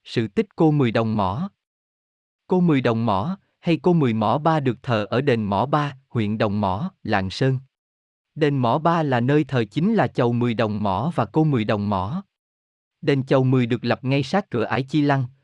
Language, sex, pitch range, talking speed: Vietnamese, male, 110-150 Hz, 210 wpm